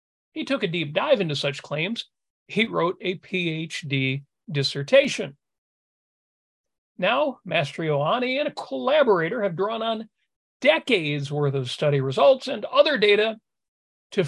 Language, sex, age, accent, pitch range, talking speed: English, male, 40-59, American, 145-245 Hz, 125 wpm